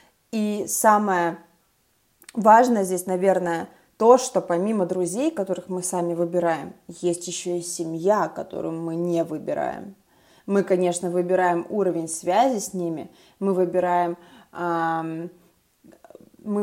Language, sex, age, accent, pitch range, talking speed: Russian, female, 20-39, native, 175-200 Hz, 110 wpm